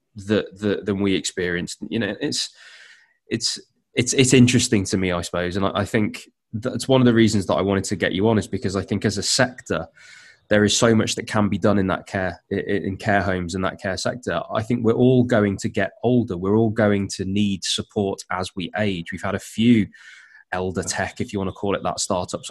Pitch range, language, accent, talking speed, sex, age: 95-110 Hz, English, British, 235 wpm, male, 20-39